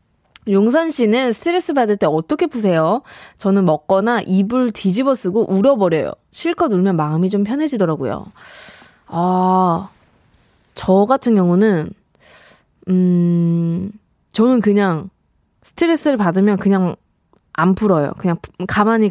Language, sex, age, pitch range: Korean, female, 20-39, 175-245 Hz